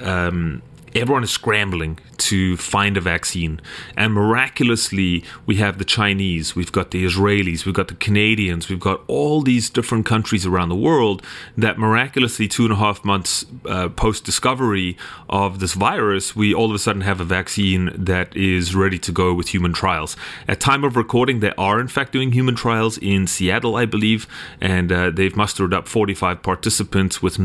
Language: English